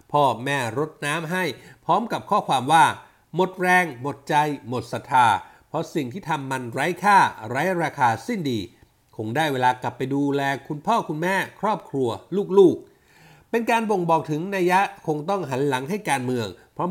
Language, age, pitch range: Thai, 60-79, 130-190 Hz